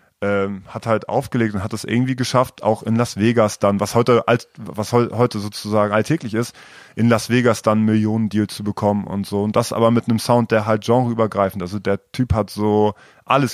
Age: 30-49